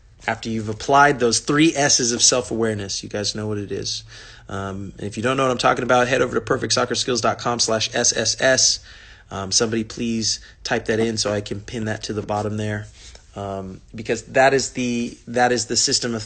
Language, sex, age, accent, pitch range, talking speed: English, male, 30-49, American, 100-120 Hz, 195 wpm